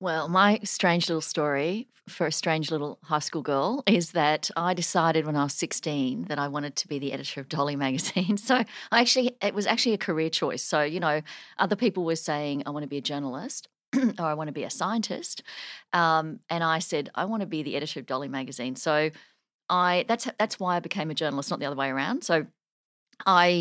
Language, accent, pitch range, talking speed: English, Australian, 150-195 Hz, 225 wpm